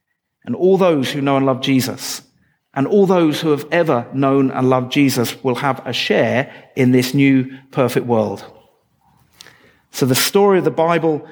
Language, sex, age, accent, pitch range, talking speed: English, male, 40-59, British, 135-175 Hz, 175 wpm